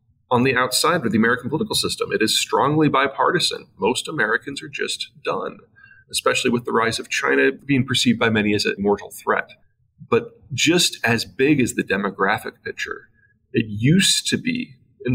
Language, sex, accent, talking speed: English, male, American, 175 wpm